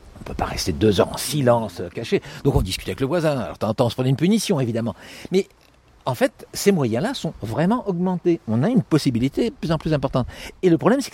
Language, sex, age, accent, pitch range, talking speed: French, male, 60-79, French, 115-170 Hz, 250 wpm